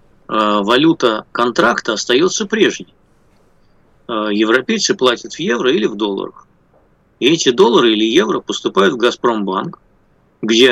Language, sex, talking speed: Russian, male, 110 wpm